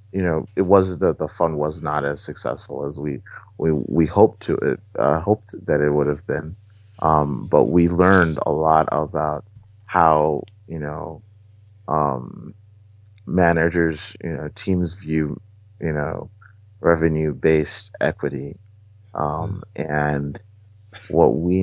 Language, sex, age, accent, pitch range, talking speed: English, male, 30-49, American, 75-100 Hz, 140 wpm